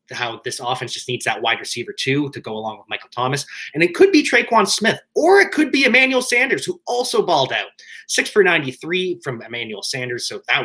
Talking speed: 220 wpm